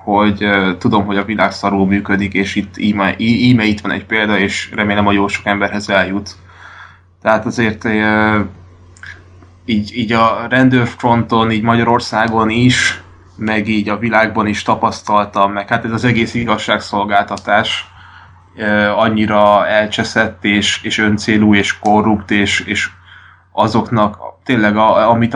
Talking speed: 135 wpm